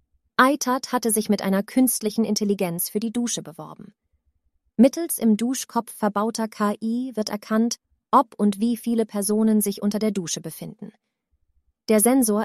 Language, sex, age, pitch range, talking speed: German, female, 30-49, 195-230 Hz, 145 wpm